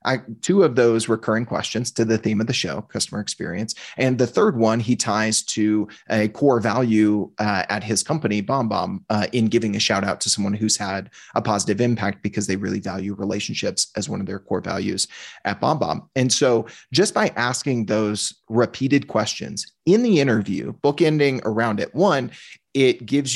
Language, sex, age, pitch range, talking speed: English, male, 30-49, 110-135 Hz, 180 wpm